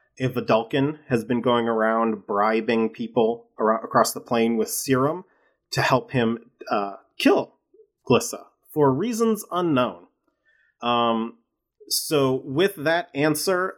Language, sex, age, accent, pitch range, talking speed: English, male, 30-49, American, 115-150 Hz, 125 wpm